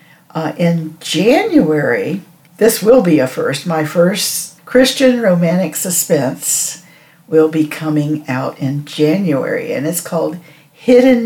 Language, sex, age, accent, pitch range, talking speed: English, female, 60-79, American, 155-200 Hz, 125 wpm